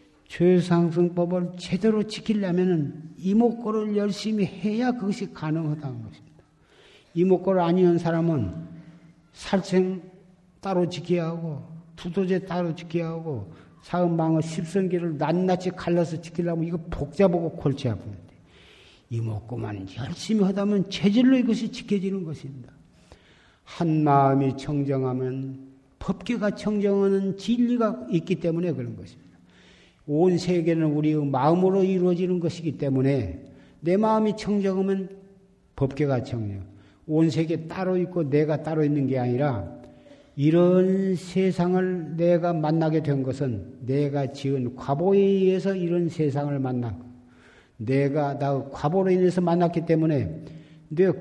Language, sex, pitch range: Korean, male, 140-185 Hz